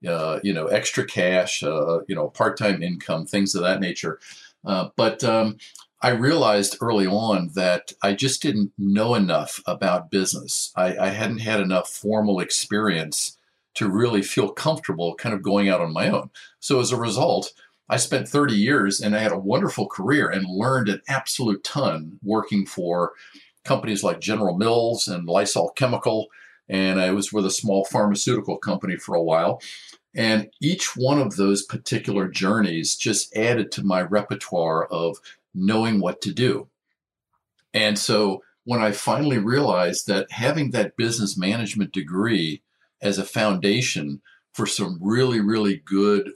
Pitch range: 95-115 Hz